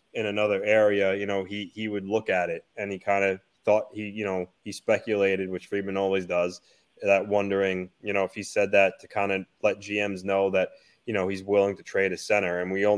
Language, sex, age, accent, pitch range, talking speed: English, male, 20-39, American, 95-110 Hz, 235 wpm